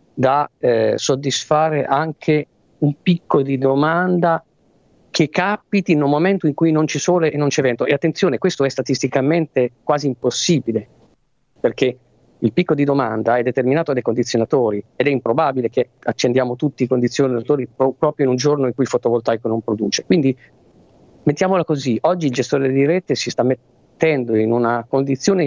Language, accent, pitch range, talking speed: Italian, native, 120-160 Hz, 165 wpm